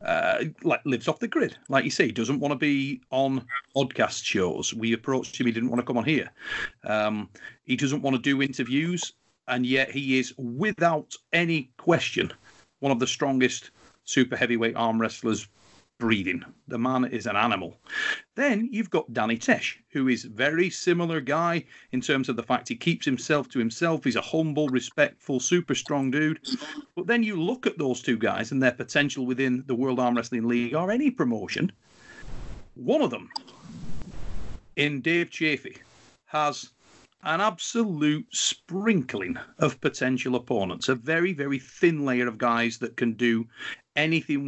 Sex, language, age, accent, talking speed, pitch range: male, English, 40-59, British, 170 wpm, 125-160 Hz